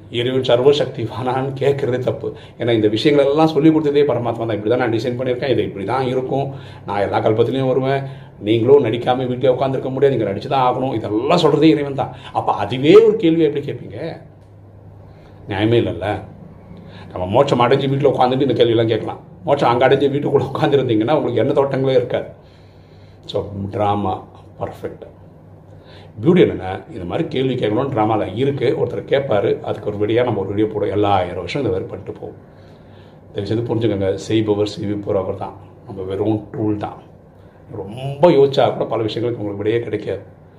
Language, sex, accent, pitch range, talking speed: Tamil, male, native, 105-135 Hz, 160 wpm